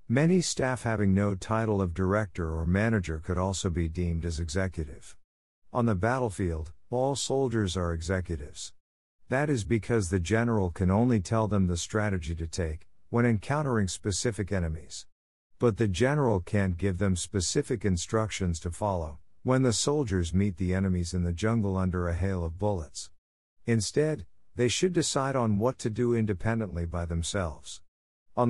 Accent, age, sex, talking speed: American, 50-69, male, 160 wpm